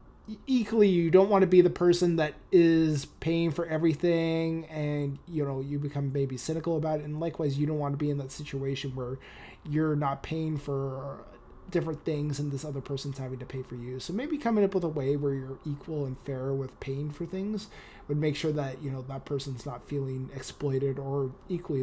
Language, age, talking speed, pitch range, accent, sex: English, 20-39, 210 wpm, 135-160 Hz, American, male